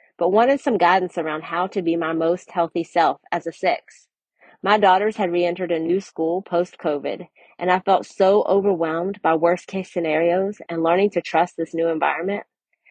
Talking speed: 175 wpm